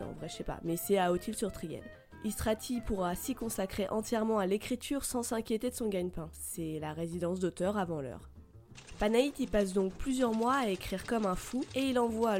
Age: 20-39